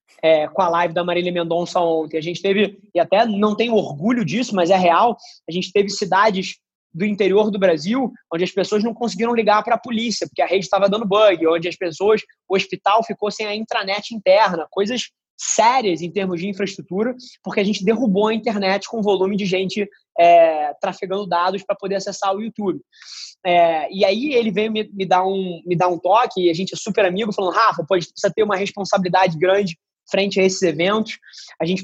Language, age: Portuguese, 20-39